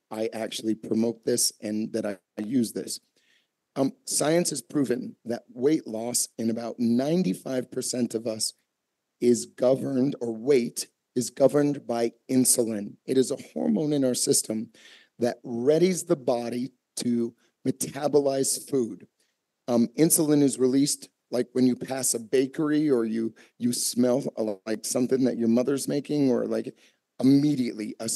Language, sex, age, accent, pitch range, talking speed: English, male, 40-59, American, 120-135 Hz, 145 wpm